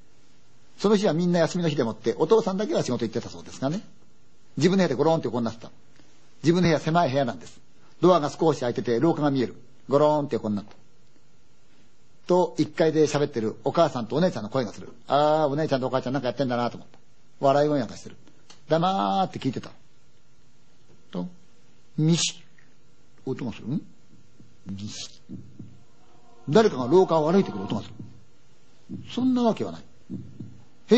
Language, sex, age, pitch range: Chinese, male, 50-69, 120-165 Hz